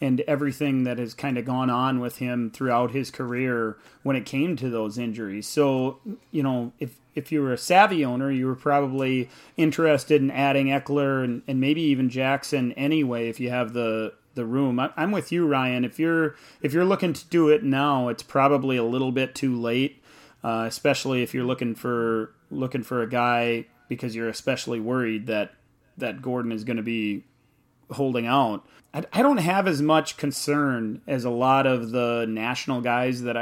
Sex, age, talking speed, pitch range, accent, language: male, 30-49, 190 wpm, 120-140 Hz, American, English